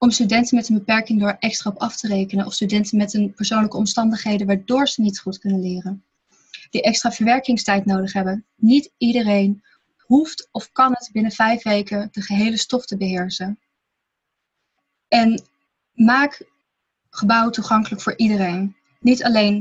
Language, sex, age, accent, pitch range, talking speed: Dutch, female, 20-39, Dutch, 200-240 Hz, 155 wpm